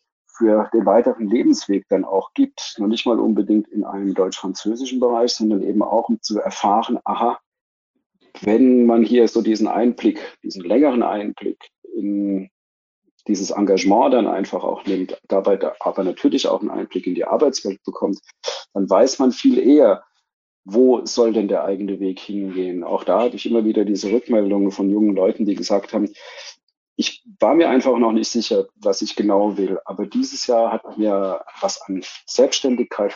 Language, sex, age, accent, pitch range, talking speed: German, male, 40-59, German, 100-125 Hz, 170 wpm